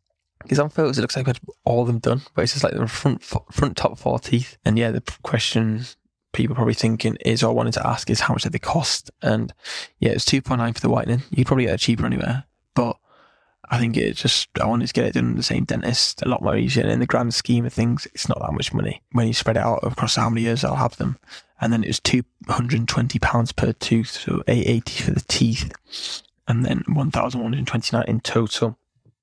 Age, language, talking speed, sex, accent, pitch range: 10-29, English, 235 wpm, male, British, 115-125 Hz